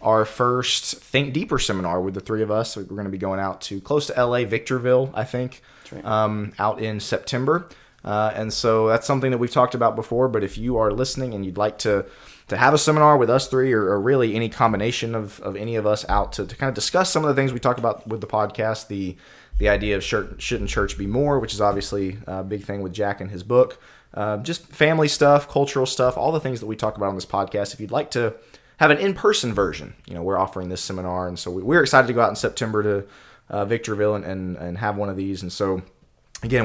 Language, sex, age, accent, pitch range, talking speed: English, male, 20-39, American, 100-130 Hz, 245 wpm